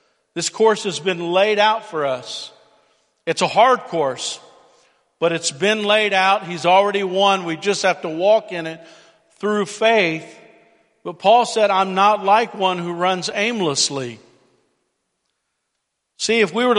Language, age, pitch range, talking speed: English, 50-69, 170-215 Hz, 155 wpm